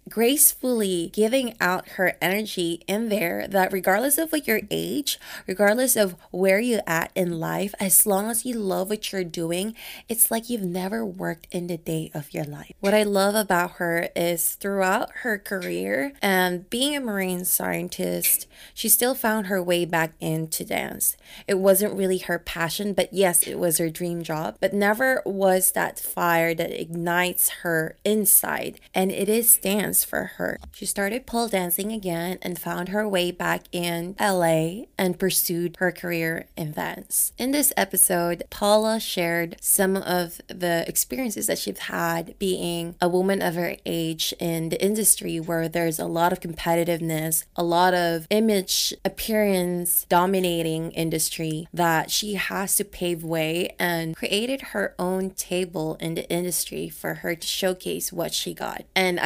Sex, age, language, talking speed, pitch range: female, 20-39, English, 165 wpm, 170-205 Hz